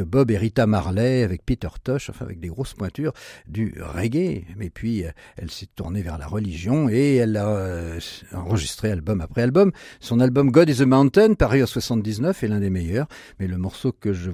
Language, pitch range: French, 105-150 Hz